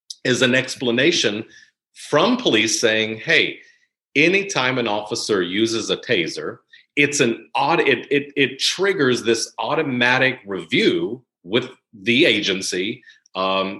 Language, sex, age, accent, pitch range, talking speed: English, male, 40-59, American, 115-180 Hz, 115 wpm